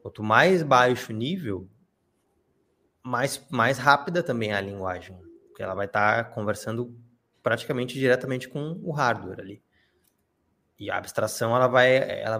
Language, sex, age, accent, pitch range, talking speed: Portuguese, male, 20-39, Brazilian, 105-145 Hz, 140 wpm